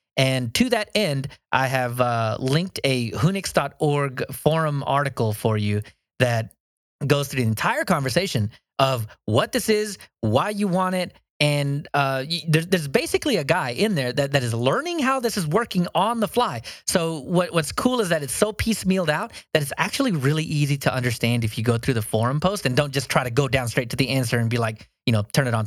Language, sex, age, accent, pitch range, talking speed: English, male, 30-49, American, 120-175 Hz, 215 wpm